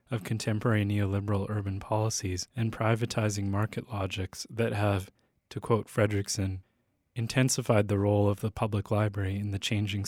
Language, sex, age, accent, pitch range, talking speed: English, male, 20-39, American, 100-120 Hz, 145 wpm